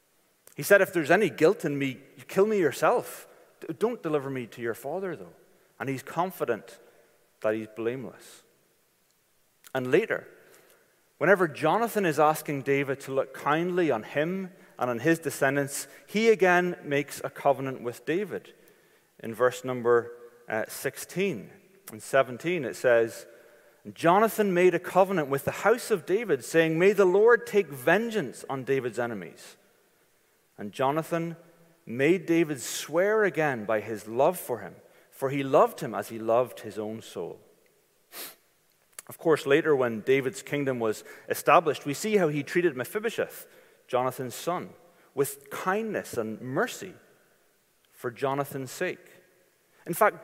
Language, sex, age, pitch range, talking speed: English, male, 30-49, 135-200 Hz, 140 wpm